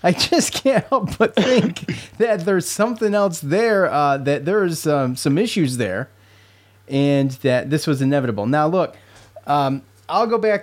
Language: English